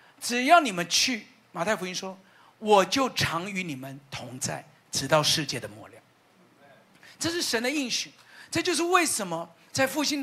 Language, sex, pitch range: Chinese, male, 190-255 Hz